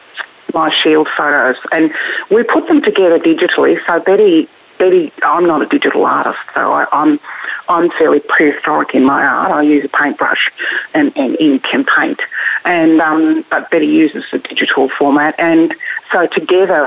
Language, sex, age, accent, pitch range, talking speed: English, female, 40-59, Australian, 160-235 Hz, 165 wpm